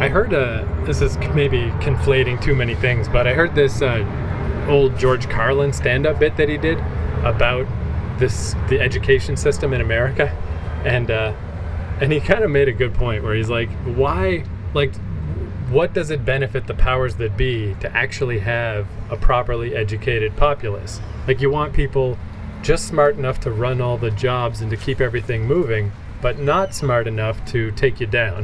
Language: English